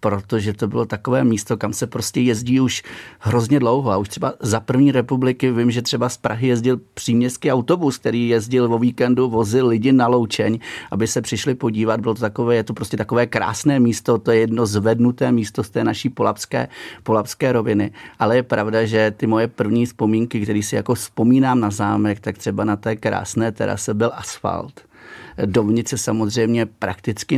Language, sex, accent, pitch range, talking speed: Czech, male, native, 105-120 Hz, 185 wpm